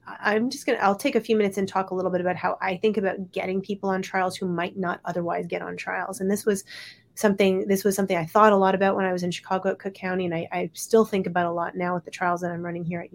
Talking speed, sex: 305 wpm, female